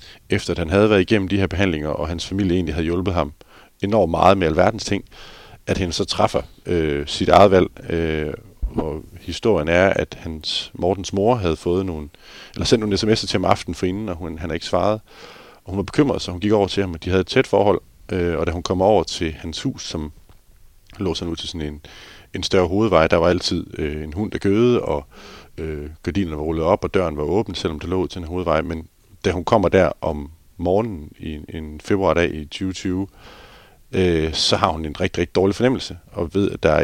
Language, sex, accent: Danish, male, native